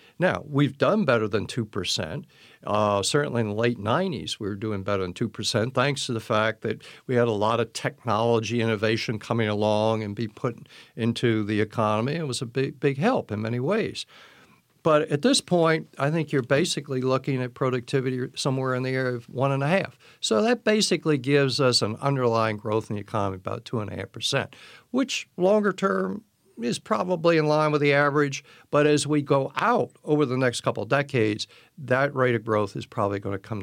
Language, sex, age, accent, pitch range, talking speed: English, male, 60-79, American, 110-145 Hz, 190 wpm